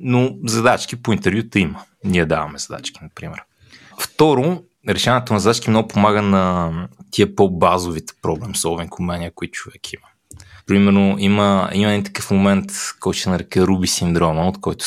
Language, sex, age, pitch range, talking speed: Bulgarian, male, 20-39, 90-110 Hz, 150 wpm